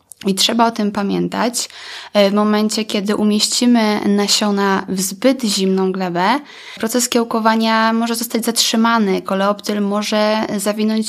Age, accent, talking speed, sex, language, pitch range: 20-39, native, 120 wpm, female, Polish, 200-230 Hz